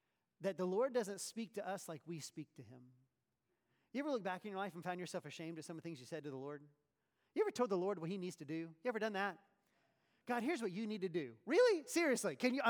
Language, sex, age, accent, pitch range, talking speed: English, male, 30-49, American, 165-245 Hz, 280 wpm